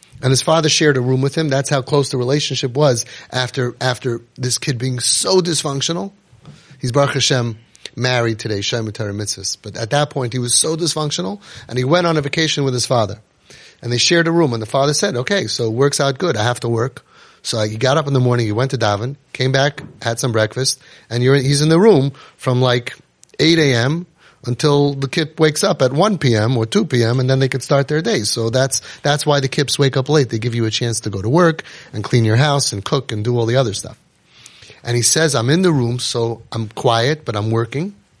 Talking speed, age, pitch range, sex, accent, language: 235 wpm, 30-49, 120-155 Hz, male, American, English